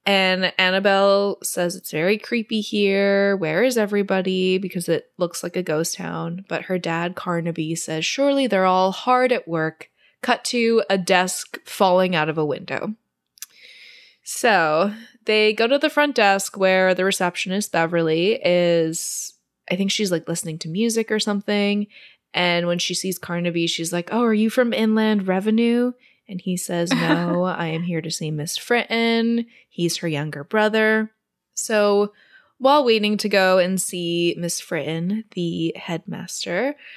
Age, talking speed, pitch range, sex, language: 20-39, 155 wpm, 170-215 Hz, female, English